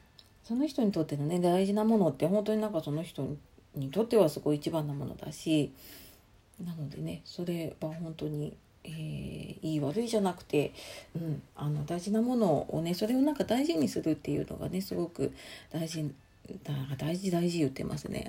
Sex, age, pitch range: female, 40-59, 150-210 Hz